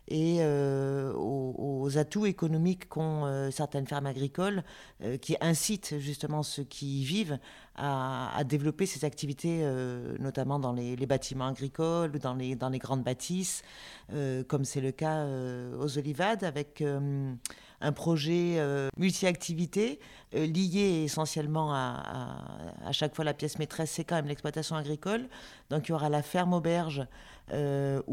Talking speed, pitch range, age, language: 160 wpm, 140-165 Hz, 50-69, French